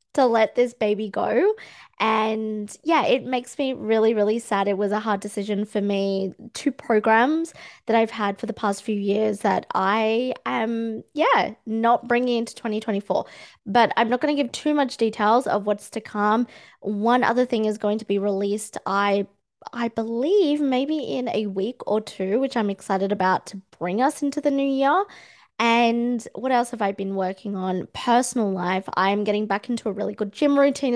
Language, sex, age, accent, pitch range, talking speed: English, female, 20-39, Australian, 205-250 Hz, 190 wpm